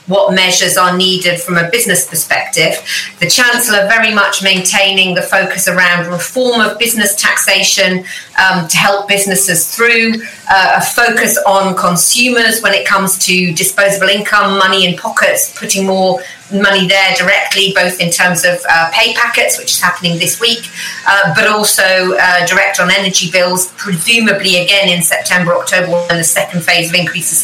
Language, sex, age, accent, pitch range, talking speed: English, female, 40-59, British, 180-205 Hz, 165 wpm